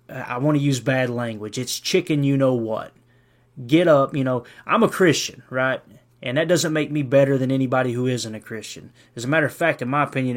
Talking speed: 225 wpm